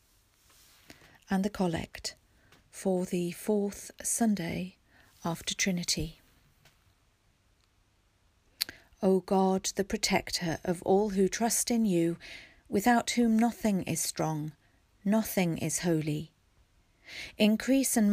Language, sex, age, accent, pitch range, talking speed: English, female, 40-59, British, 155-200 Hz, 95 wpm